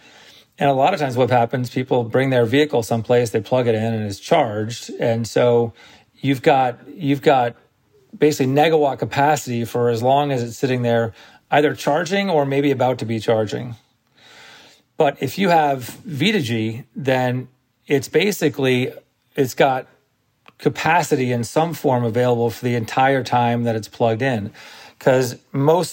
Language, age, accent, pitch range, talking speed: English, 40-59, American, 120-140 Hz, 155 wpm